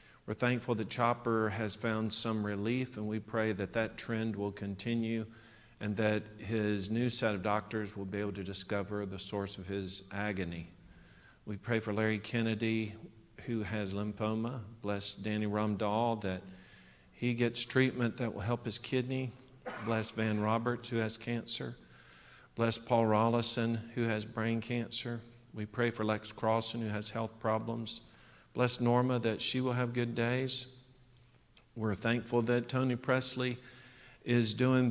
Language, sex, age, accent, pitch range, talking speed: English, male, 50-69, American, 105-120 Hz, 155 wpm